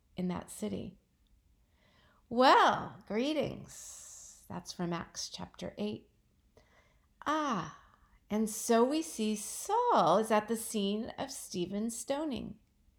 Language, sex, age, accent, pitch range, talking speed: English, female, 50-69, American, 180-265 Hz, 105 wpm